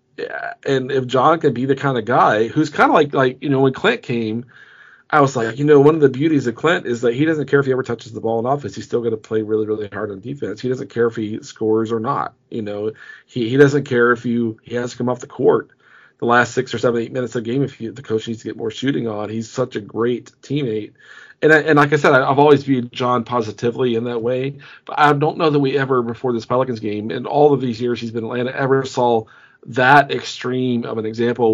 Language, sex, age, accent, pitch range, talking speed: English, male, 40-59, American, 115-140 Hz, 270 wpm